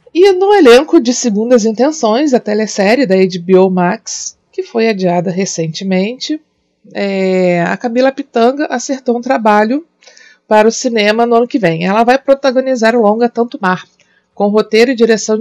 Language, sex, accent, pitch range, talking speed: Portuguese, female, Brazilian, 190-240 Hz, 150 wpm